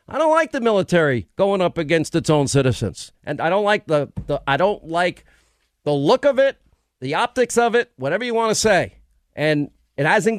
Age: 50-69